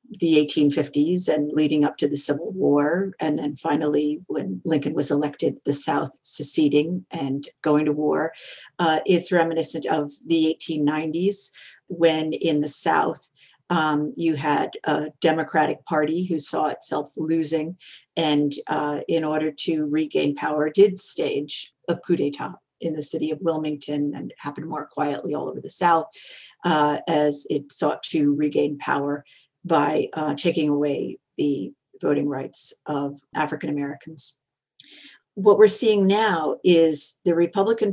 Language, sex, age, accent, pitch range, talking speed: English, female, 50-69, American, 150-170 Hz, 145 wpm